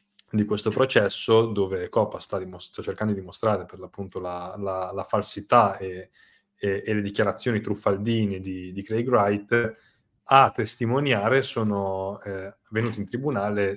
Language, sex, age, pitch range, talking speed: Italian, male, 30-49, 95-110 Hz, 150 wpm